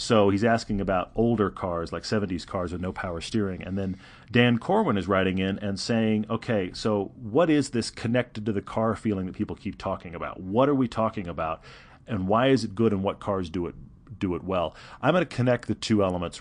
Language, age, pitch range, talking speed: English, 40-59, 100-125 Hz, 225 wpm